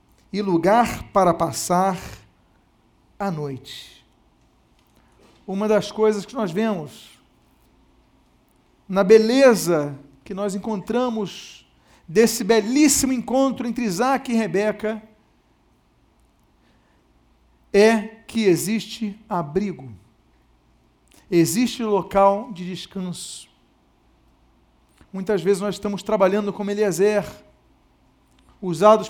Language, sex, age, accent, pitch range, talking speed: Portuguese, male, 50-69, Brazilian, 190-270 Hz, 85 wpm